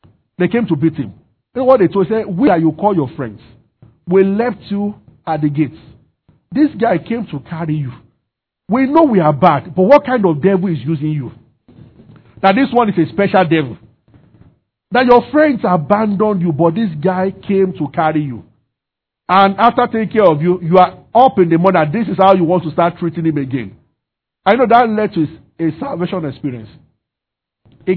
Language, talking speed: English, 205 wpm